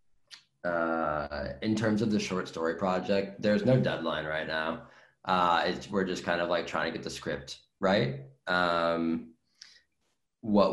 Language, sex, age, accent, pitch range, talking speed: English, male, 20-39, American, 75-95 Hz, 150 wpm